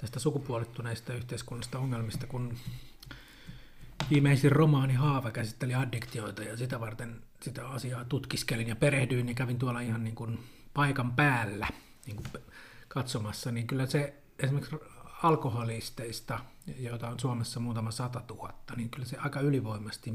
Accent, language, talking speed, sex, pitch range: native, Finnish, 135 wpm, male, 115-135 Hz